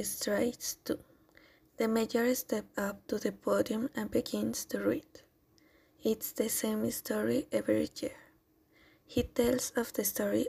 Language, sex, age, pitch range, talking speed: Spanish, female, 20-39, 220-255 Hz, 135 wpm